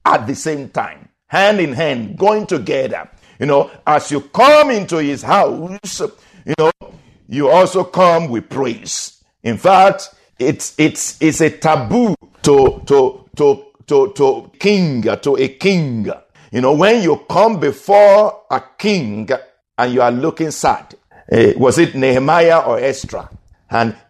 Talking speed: 150 wpm